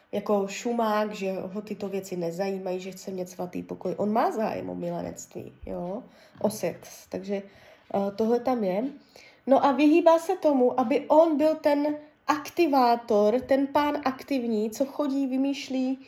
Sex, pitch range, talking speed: female, 215-275 Hz, 150 wpm